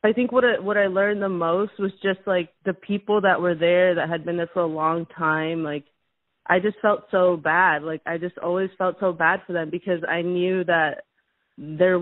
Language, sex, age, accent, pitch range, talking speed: English, female, 20-39, American, 160-185 Hz, 220 wpm